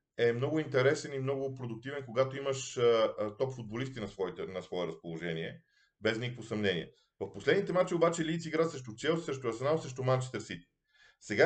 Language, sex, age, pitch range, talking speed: Bulgarian, male, 40-59, 120-175 Hz, 175 wpm